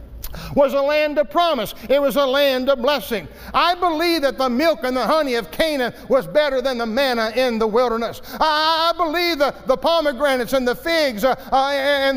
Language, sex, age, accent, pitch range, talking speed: English, male, 50-69, American, 245-290 Hz, 185 wpm